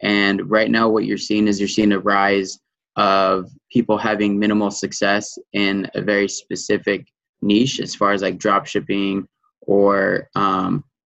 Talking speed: 155 wpm